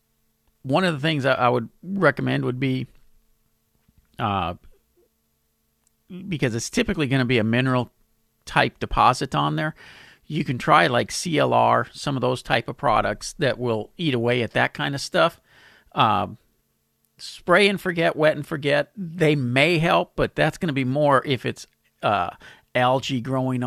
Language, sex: English, male